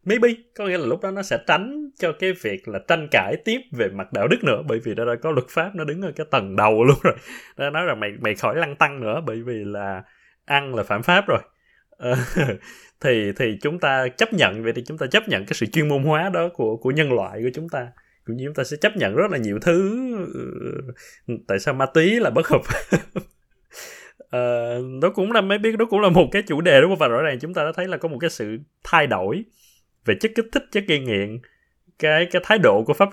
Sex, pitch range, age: male, 115-175 Hz, 20-39